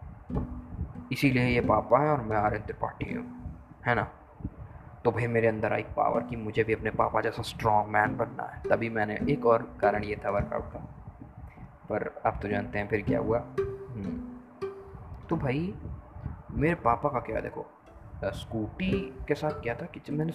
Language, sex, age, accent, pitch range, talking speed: Hindi, male, 20-39, native, 110-150 Hz, 170 wpm